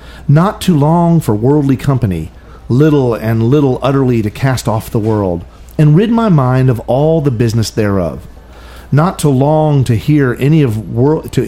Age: 40-59